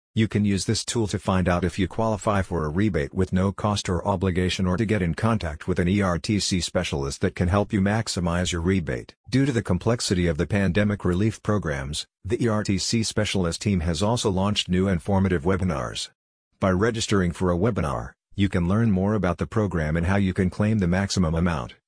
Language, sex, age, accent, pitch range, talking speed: English, male, 50-69, American, 90-105 Hz, 205 wpm